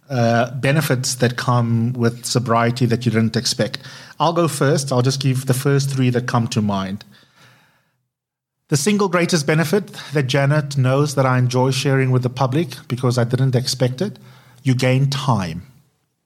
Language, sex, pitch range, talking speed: English, male, 120-140 Hz, 160 wpm